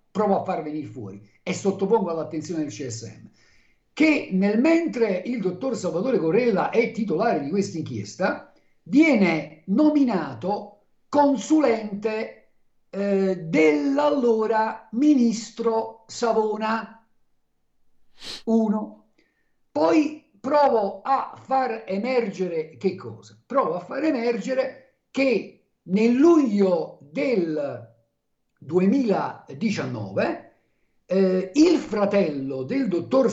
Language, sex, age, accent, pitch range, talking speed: Italian, male, 50-69, native, 185-265 Hz, 90 wpm